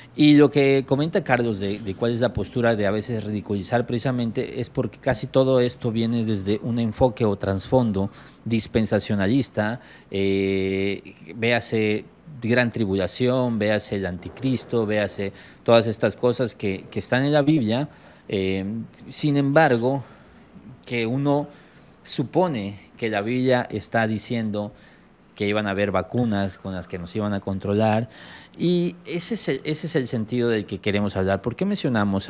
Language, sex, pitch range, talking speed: Spanish, male, 105-130 Hz, 155 wpm